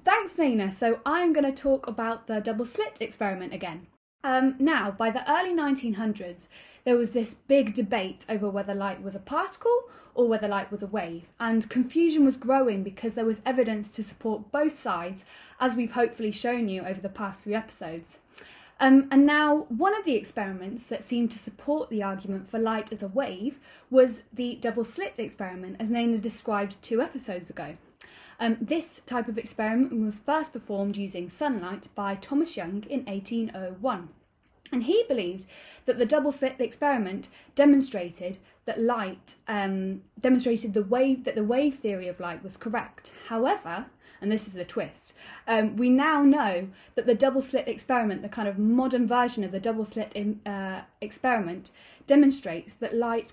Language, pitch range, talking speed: English, 205-260 Hz, 170 wpm